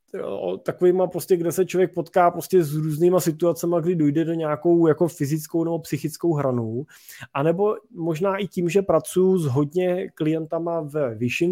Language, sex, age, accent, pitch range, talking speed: Czech, male, 20-39, native, 145-170 Hz, 155 wpm